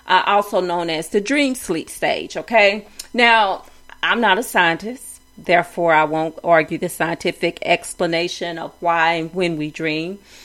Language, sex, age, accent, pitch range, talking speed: English, female, 40-59, American, 175-215 Hz, 155 wpm